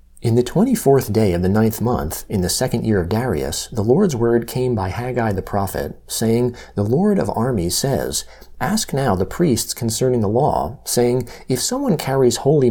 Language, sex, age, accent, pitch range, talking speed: English, male, 40-59, American, 100-125 Hz, 190 wpm